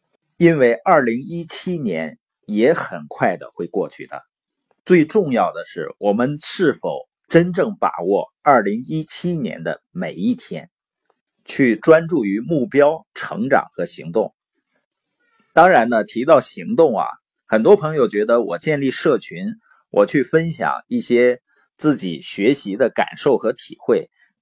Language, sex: Chinese, male